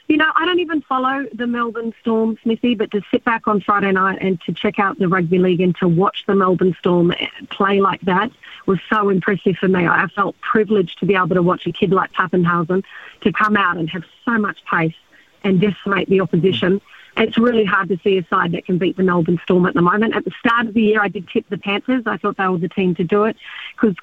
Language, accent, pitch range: English, Australian, 185-215 Hz